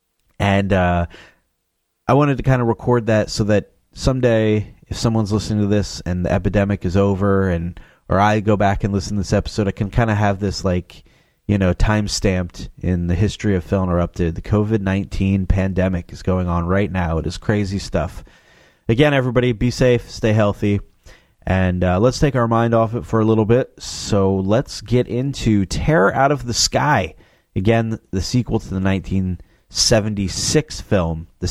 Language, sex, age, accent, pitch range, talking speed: English, male, 30-49, American, 95-120 Hz, 185 wpm